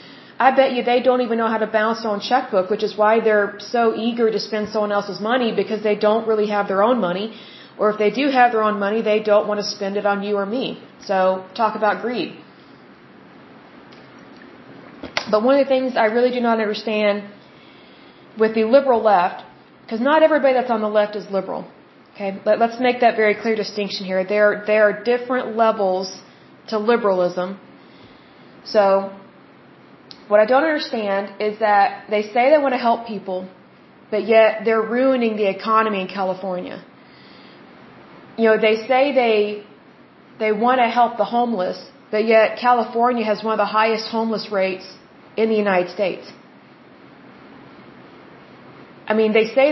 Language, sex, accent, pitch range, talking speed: Bengali, female, American, 205-235 Hz, 175 wpm